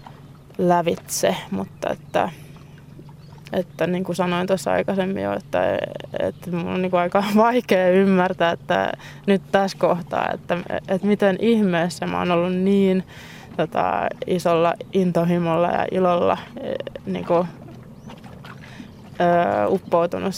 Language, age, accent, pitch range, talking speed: Finnish, 20-39, native, 170-190 Hz, 110 wpm